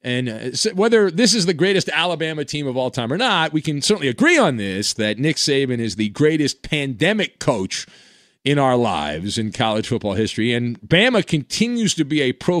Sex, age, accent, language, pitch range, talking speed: male, 40-59, American, English, 125-180 Hz, 200 wpm